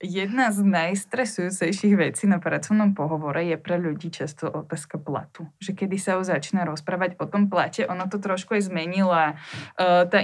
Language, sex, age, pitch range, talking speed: Slovak, female, 20-39, 175-205 Hz, 165 wpm